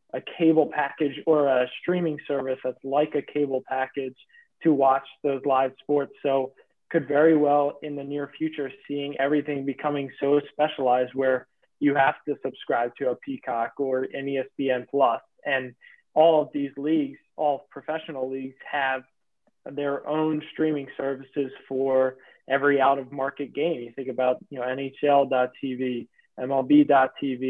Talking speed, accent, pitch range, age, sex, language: 150 wpm, American, 130-150 Hz, 20-39, male, English